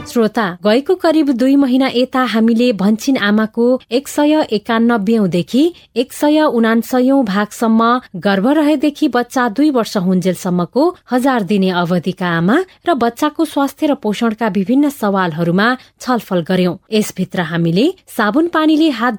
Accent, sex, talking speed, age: Indian, female, 140 wpm, 30-49